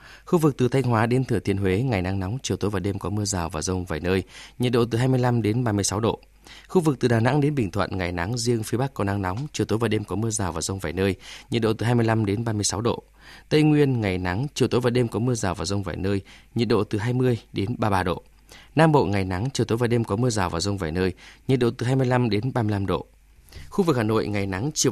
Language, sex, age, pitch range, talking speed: Vietnamese, male, 20-39, 95-125 Hz, 305 wpm